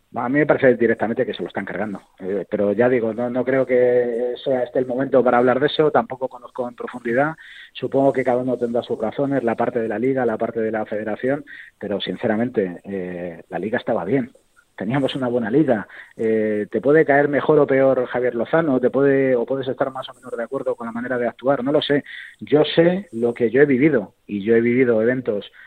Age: 30-49